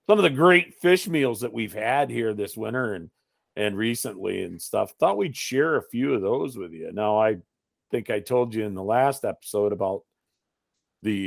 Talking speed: 200 wpm